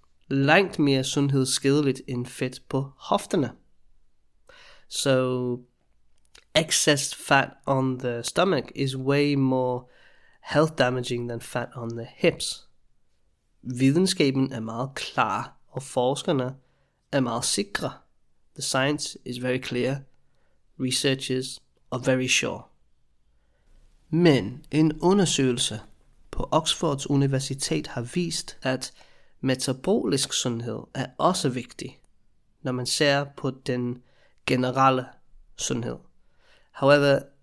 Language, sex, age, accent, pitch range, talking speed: English, male, 20-39, Danish, 125-145 Hz, 100 wpm